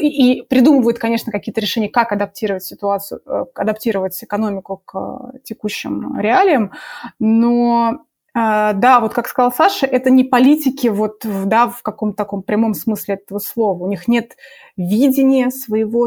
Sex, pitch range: female, 205-250 Hz